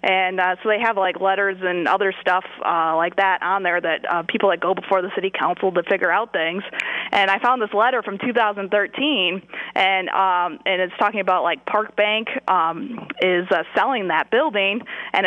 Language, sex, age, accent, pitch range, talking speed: English, female, 20-39, American, 185-220 Hz, 200 wpm